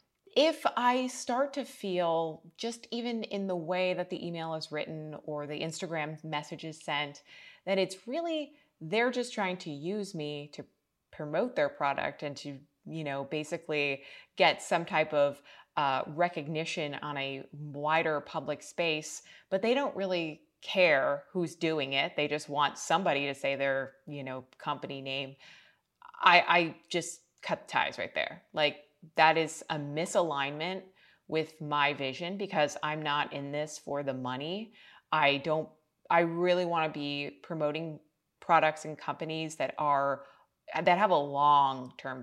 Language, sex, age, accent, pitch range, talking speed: English, female, 20-39, American, 145-185 Hz, 155 wpm